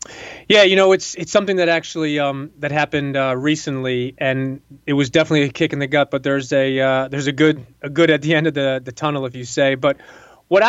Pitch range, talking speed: 135-155 Hz, 240 wpm